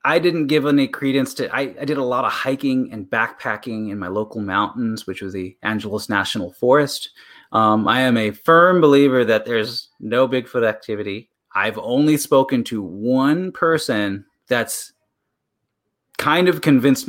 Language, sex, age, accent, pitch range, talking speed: English, male, 30-49, American, 110-135 Hz, 160 wpm